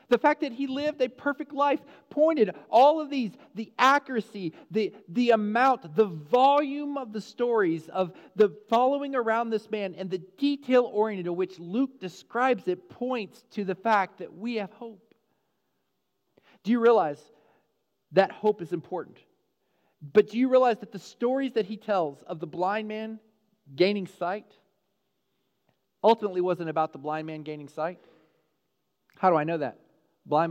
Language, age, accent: English, 40-59, American